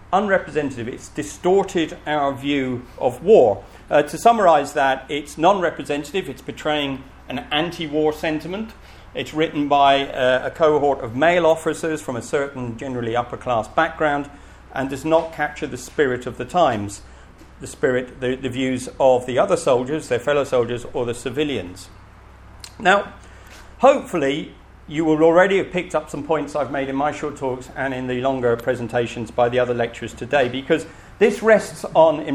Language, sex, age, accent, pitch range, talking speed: English, male, 50-69, British, 115-150 Hz, 165 wpm